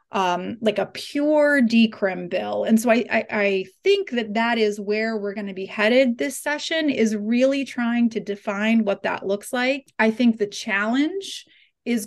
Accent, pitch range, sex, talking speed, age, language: American, 205-245 Hz, female, 185 wpm, 30-49, English